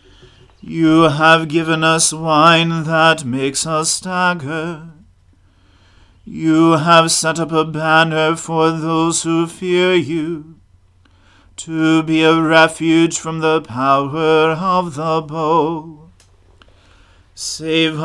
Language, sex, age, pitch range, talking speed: English, male, 40-59, 140-165 Hz, 105 wpm